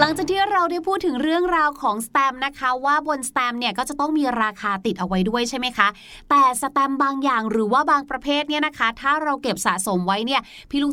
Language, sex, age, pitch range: Thai, female, 20-39, 230-315 Hz